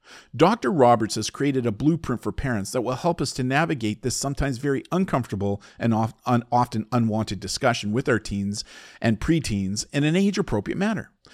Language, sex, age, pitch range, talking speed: English, male, 50-69, 105-140 Hz, 165 wpm